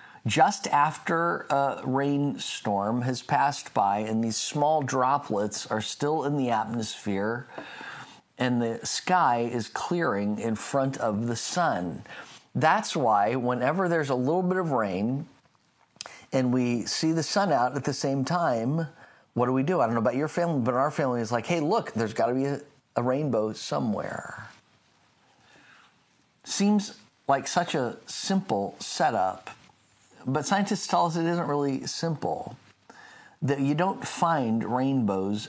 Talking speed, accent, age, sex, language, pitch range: 150 wpm, American, 50-69, male, English, 115-150 Hz